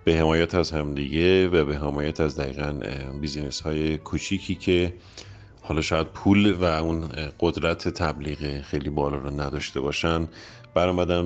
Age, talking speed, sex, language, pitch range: 40-59, 135 wpm, male, Persian, 75-100 Hz